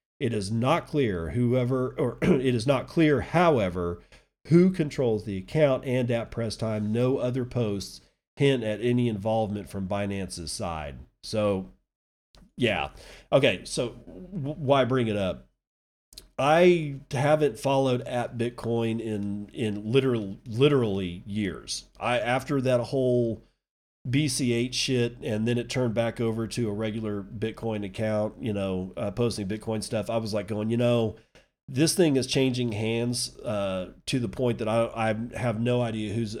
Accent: American